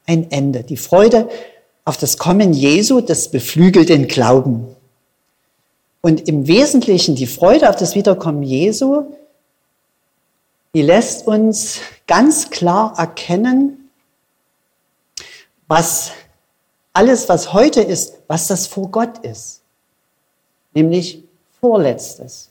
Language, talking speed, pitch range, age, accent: German, 100 wpm, 150-190 Hz, 50-69, German